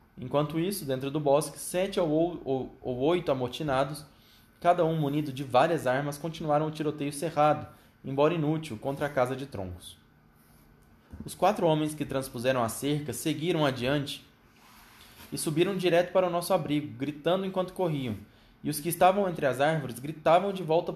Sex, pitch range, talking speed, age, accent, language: male, 130-165 Hz, 155 wpm, 20-39, Brazilian, Portuguese